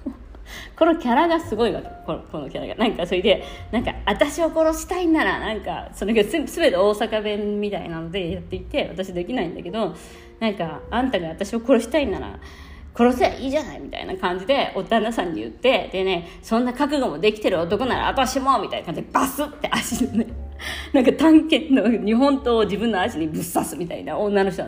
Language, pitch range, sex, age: Japanese, 195-310 Hz, female, 40-59